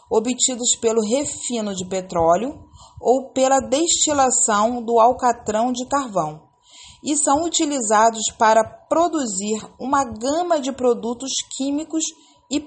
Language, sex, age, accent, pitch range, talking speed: Portuguese, female, 40-59, Brazilian, 185-275 Hz, 110 wpm